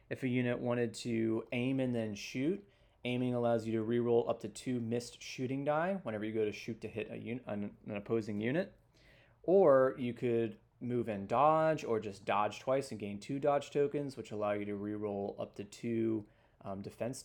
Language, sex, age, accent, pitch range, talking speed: English, male, 20-39, American, 105-120 Hz, 190 wpm